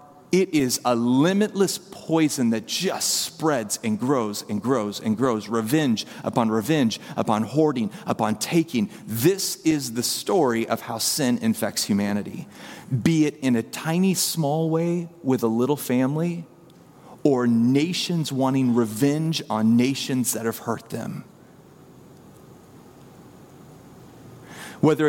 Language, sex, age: English, male, 30-49